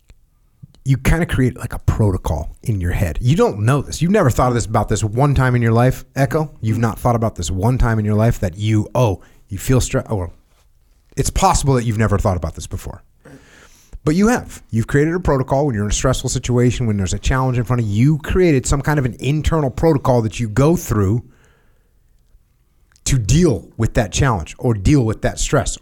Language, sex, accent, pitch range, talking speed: English, male, American, 105-135 Hz, 225 wpm